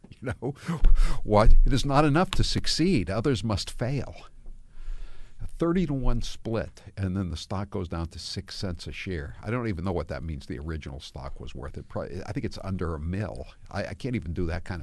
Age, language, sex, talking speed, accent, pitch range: 60-79, English, male, 215 wpm, American, 90-115 Hz